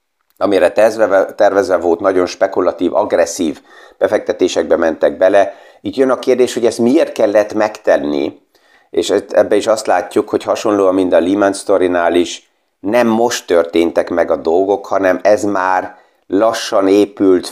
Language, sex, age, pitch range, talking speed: Hungarian, male, 30-49, 95-115 Hz, 140 wpm